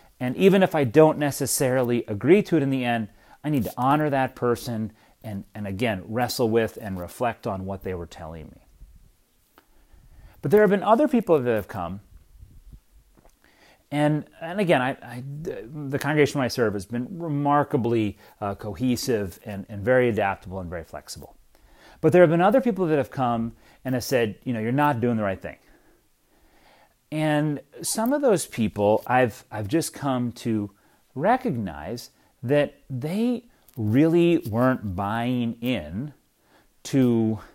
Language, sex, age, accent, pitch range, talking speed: English, male, 30-49, American, 105-145 Hz, 160 wpm